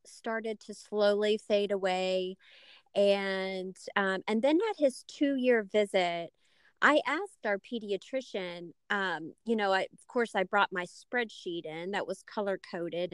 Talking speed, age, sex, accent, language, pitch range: 140 wpm, 30-49, female, American, English, 195-235 Hz